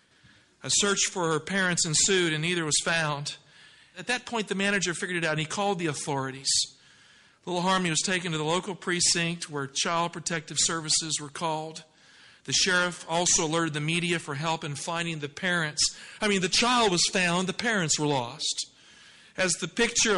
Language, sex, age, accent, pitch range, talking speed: English, male, 50-69, American, 155-200 Hz, 185 wpm